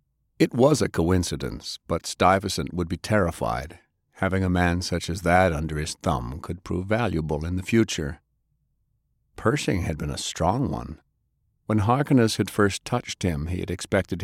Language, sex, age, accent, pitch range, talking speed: English, male, 50-69, American, 85-105 Hz, 165 wpm